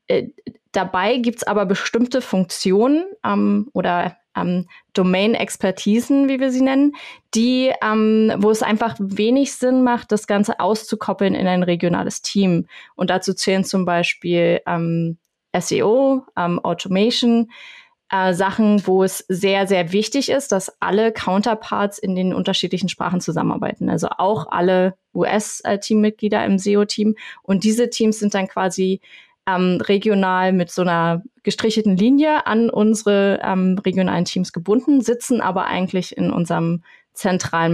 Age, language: 20-39, German